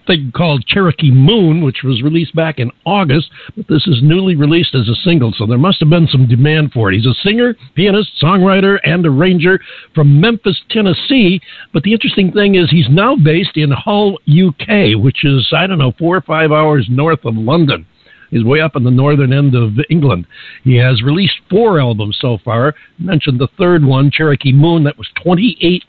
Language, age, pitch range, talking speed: English, 60-79, 135-175 Hz, 195 wpm